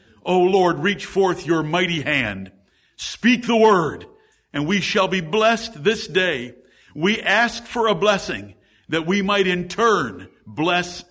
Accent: American